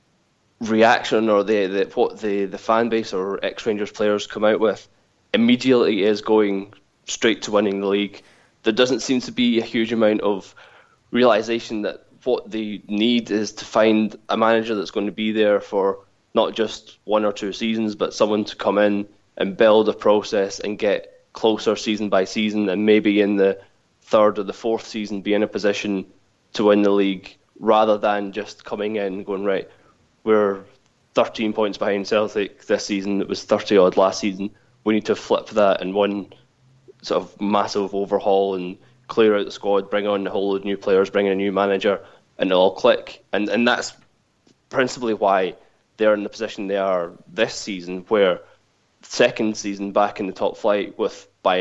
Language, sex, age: English, male, 20-39